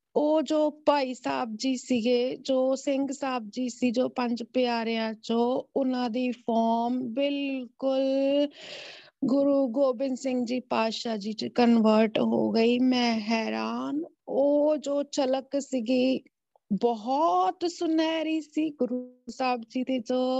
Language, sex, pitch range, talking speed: Punjabi, female, 245-280 Hz, 130 wpm